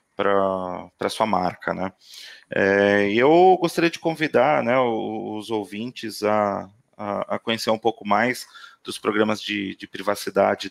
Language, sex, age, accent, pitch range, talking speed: Portuguese, male, 30-49, Brazilian, 105-120 Hz, 135 wpm